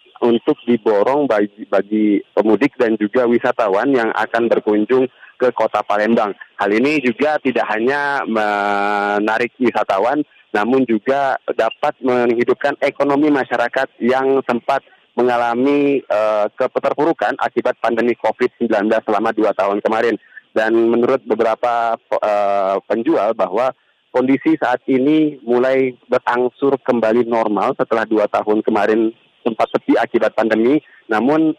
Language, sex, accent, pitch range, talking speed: Indonesian, male, native, 110-130 Hz, 115 wpm